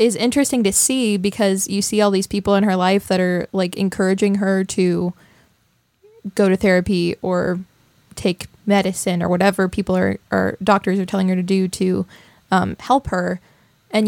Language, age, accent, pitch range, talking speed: English, 10-29, American, 190-215 Hz, 175 wpm